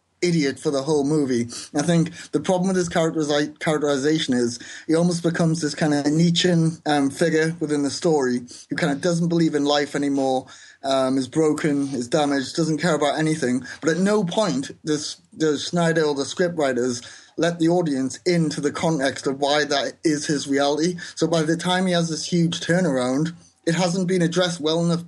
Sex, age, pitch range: male, 30-49, 140-165 Hz